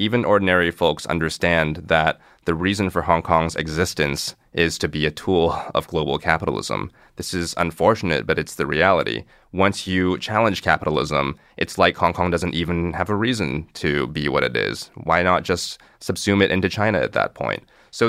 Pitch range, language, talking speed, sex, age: 80-100 Hz, English, 185 wpm, male, 30-49